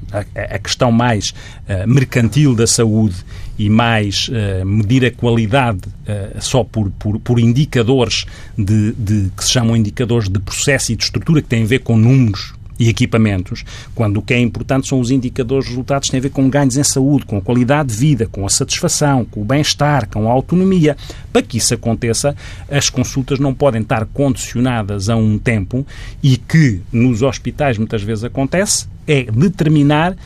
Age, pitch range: 40-59, 110-145 Hz